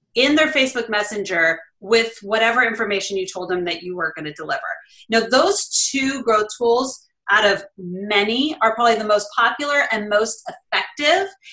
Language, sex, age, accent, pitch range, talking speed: English, female, 30-49, American, 220-285 Hz, 160 wpm